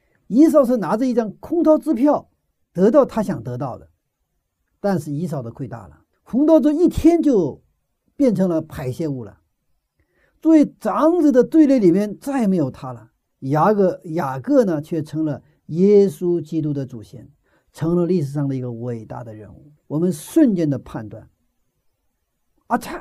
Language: Chinese